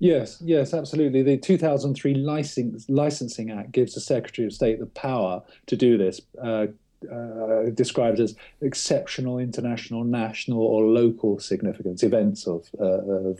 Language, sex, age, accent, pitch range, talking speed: English, male, 40-59, British, 105-135 Hz, 145 wpm